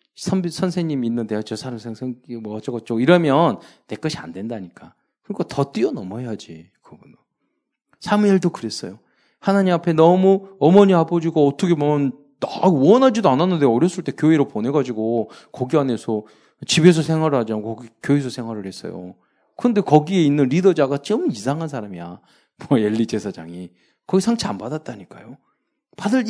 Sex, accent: male, native